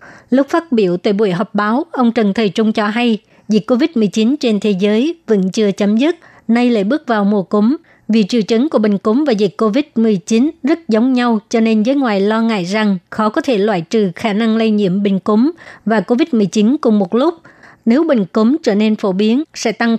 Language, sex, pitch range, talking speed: Vietnamese, male, 210-250 Hz, 215 wpm